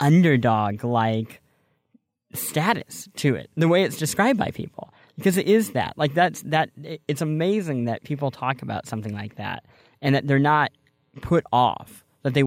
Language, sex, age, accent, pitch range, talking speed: English, male, 20-39, American, 120-170 Hz, 170 wpm